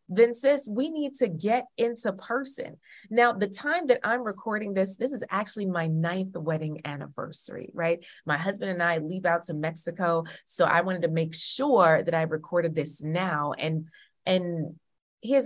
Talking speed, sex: 175 wpm, female